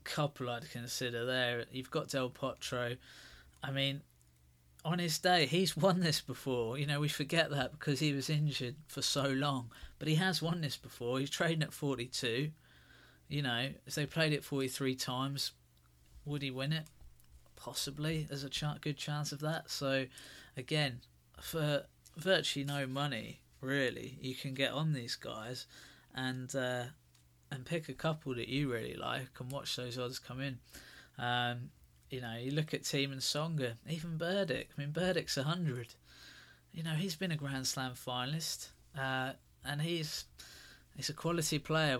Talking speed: 165 wpm